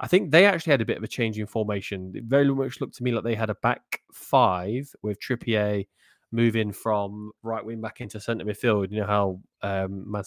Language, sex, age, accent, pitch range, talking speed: English, male, 20-39, British, 95-110 Hz, 230 wpm